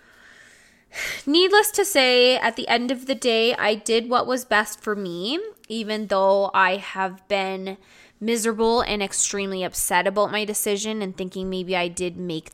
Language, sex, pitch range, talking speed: English, female, 190-220 Hz, 165 wpm